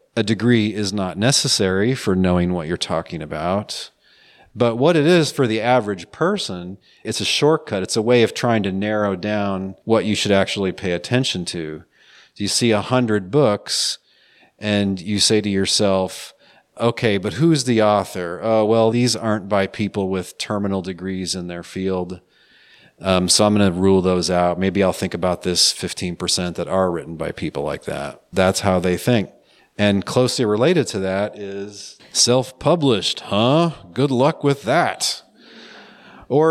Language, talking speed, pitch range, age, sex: English, 170 wpm, 95-120 Hz, 40-59, male